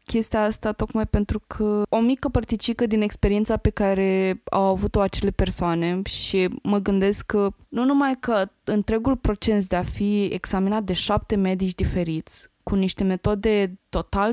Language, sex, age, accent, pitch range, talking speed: Romanian, female, 20-39, native, 180-215 Hz, 155 wpm